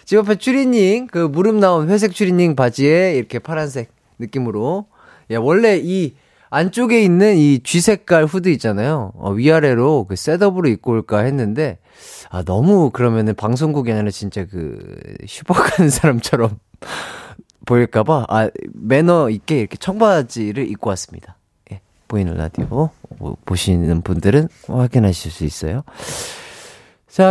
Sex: male